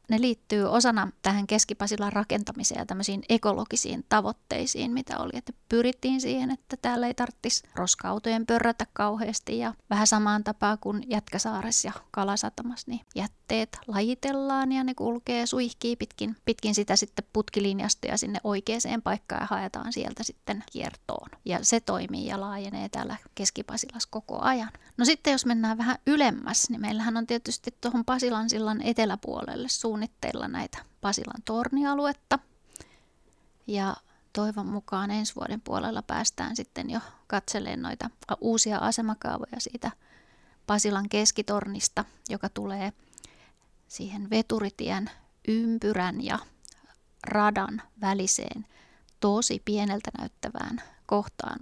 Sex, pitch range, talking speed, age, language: female, 210-240 Hz, 120 wpm, 20-39, Finnish